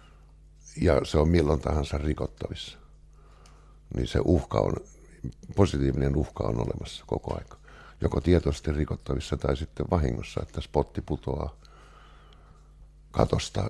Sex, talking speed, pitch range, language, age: male, 115 wpm, 70-85 Hz, English, 60-79